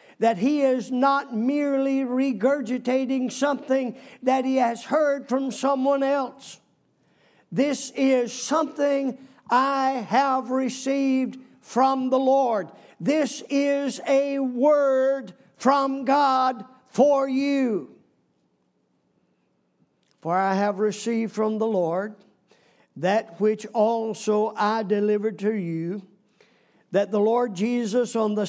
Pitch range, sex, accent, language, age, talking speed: 190-255 Hz, male, American, English, 50-69, 105 wpm